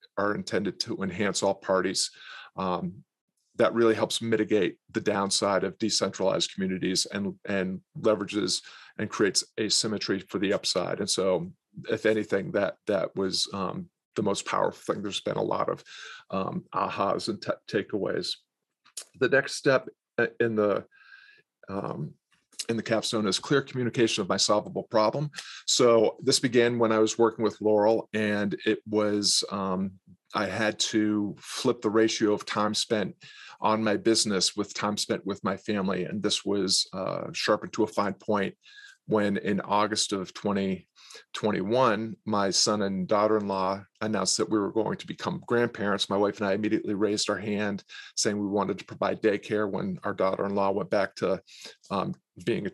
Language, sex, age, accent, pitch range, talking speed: English, male, 40-59, American, 100-115 Hz, 160 wpm